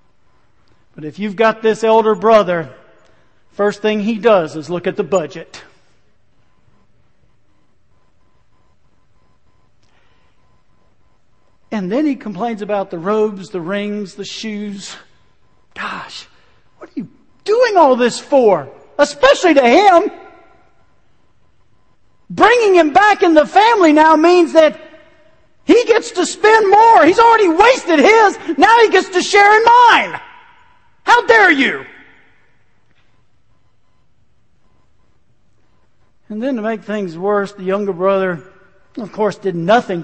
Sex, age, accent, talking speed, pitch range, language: male, 50-69, American, 120 wpm, 190-315 Hz, English